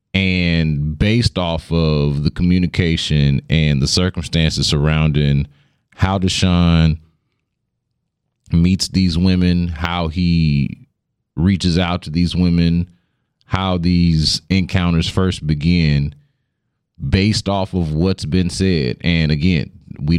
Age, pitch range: 30-49, 80-95 Hz